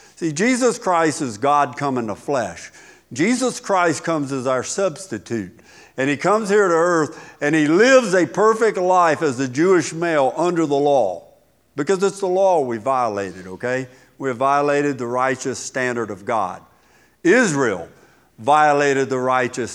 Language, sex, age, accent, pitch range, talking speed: English, male, 50-69, American, 125-175 Hz, 160 wpm